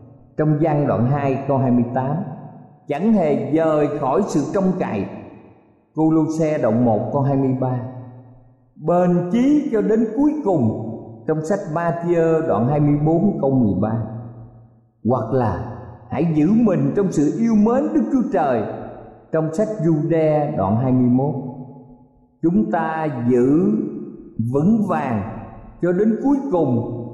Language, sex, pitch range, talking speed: Vietnamese, male, 120-190 Hz, 130 wpm